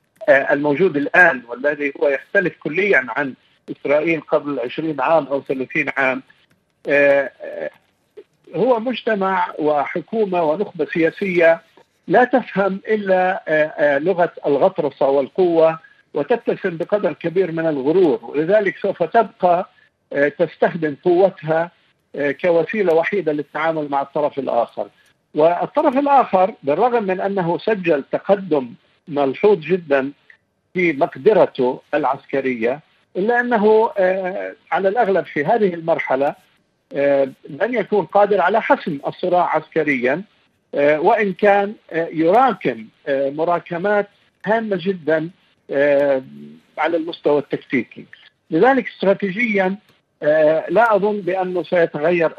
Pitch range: 150-210 Hz